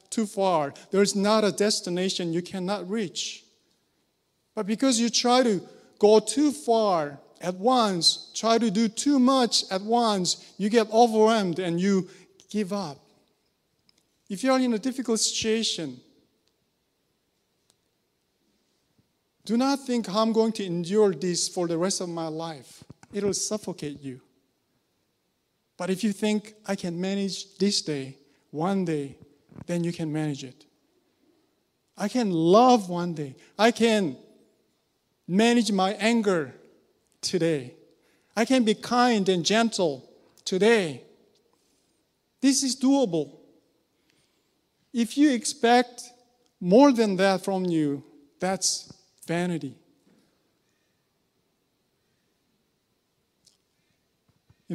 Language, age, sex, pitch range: English, 50-69, male, 170-225 Hz